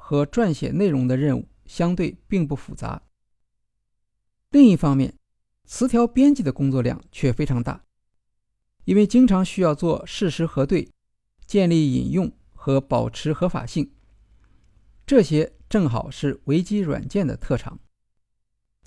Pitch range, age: 110-180 Hz, 50-69